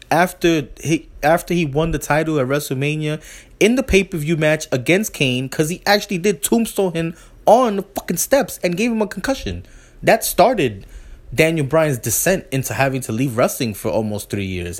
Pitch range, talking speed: 115-160 Hz, 175 wpm